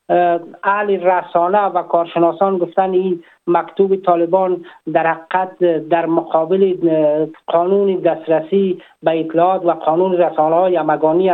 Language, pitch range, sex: Persian, 160-185 Hz, male